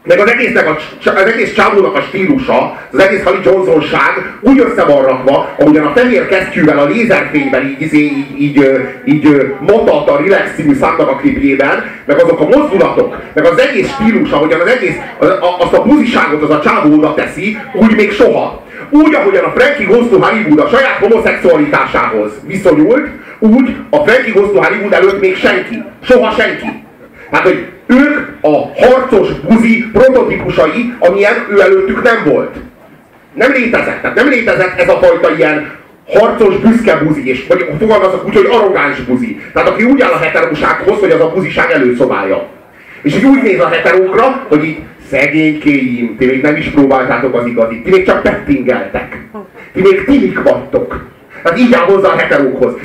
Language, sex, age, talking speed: Hungarian, male, 30-49, 165 wpm